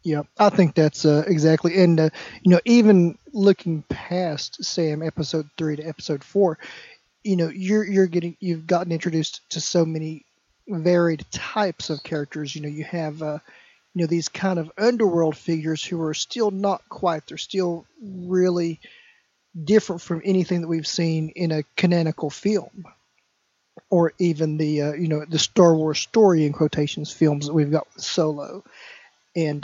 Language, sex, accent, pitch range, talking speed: English, male, American, 155-185 Hz, 170 wpm